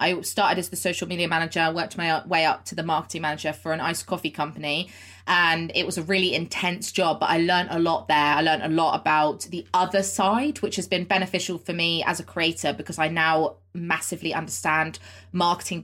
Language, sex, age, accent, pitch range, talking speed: English, female, 20-39, British, 155-175 Hz, 210 wpm